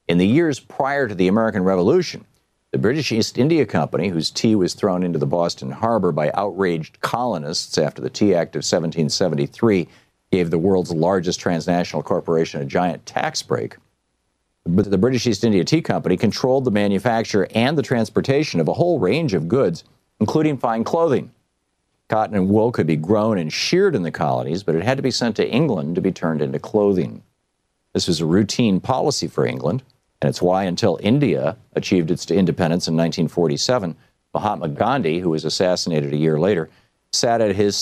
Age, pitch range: 50-69, 85-110 Hz